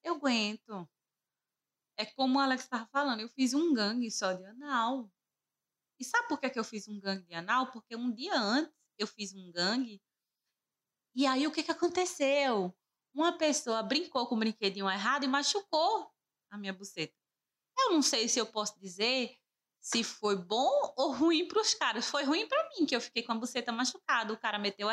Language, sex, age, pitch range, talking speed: Portuguese, female, 20-39, 200-260 Hz, 195 wpm